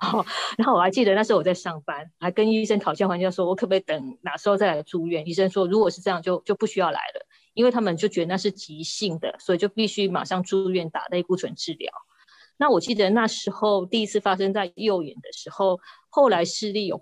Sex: female